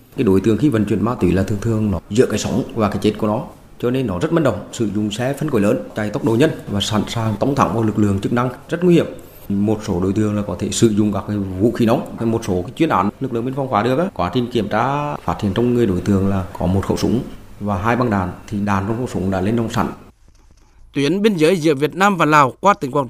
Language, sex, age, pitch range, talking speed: Vietnamese, male, 20-39, 110-165 Hz, 300 wpm